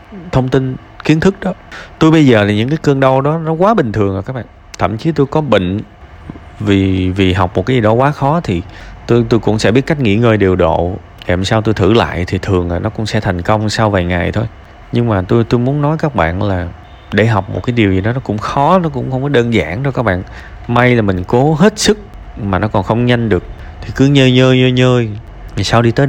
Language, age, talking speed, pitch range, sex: Vietnamese, 20-39, 260 wpm, 100-130 Hz, male